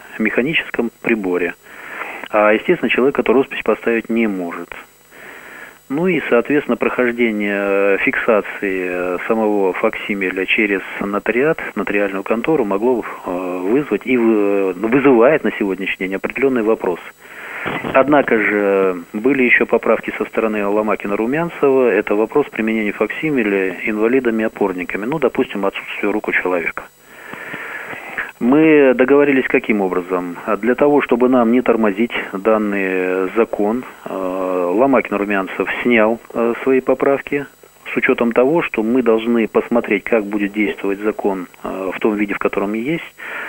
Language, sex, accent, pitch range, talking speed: Russian, male, native, 95-120 Hz, 115 wpm